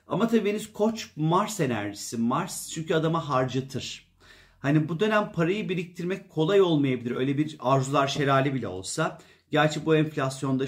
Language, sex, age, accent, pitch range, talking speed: Turkish, male, 40-59, native, 130-170 Hz, 145 wpm